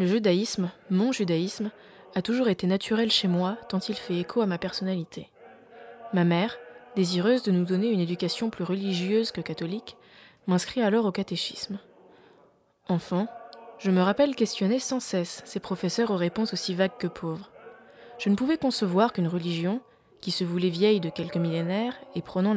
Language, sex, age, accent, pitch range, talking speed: French, female, 20-39, French, 180-225 Hz, 170 wpm